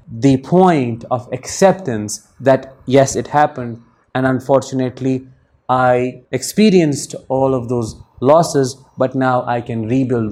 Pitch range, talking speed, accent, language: 125-150 Hz, 120 wpm, Indian, English